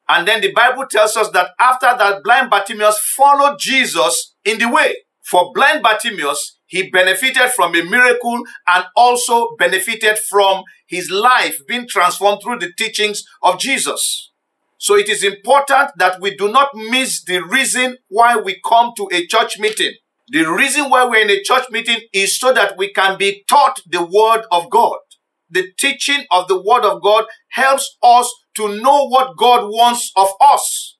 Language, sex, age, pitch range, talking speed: English, male, 50-69, 195-260 Hz, 175 wpm